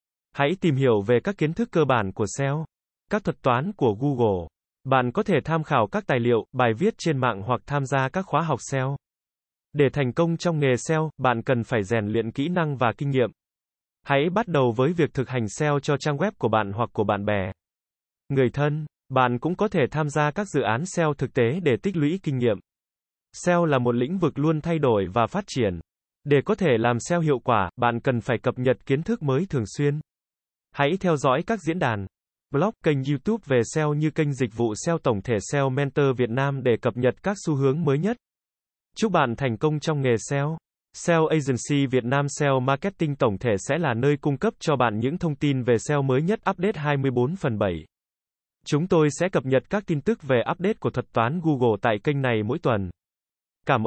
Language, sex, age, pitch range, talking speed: Vietnamese, male, 20-39, 125-160 Hz, 220 wpm